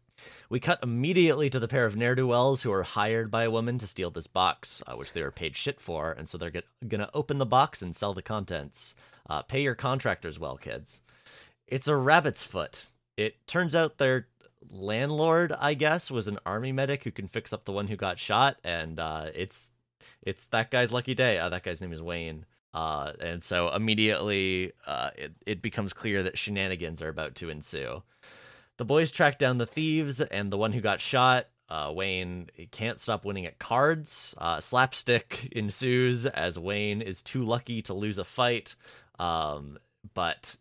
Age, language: 30-49, English